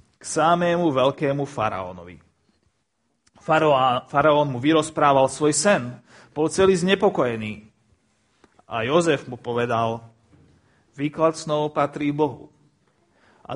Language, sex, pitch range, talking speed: Slovak, male, 125-175 Hz, 95 wpm